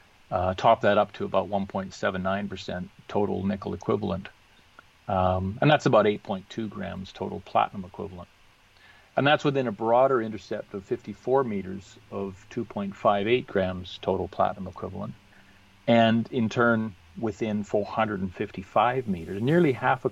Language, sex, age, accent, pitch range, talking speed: English, male, 40-59, American, 95-115 Hz, 130 wpm